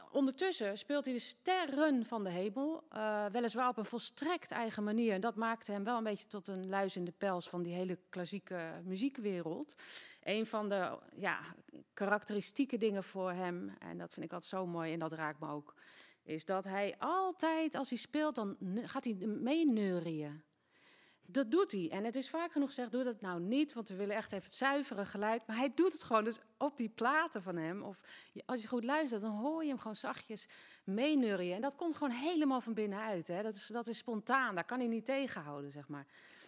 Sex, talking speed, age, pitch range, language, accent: female, 210 wpm, 40-59, 185-260 Hz, Dutch, Dutch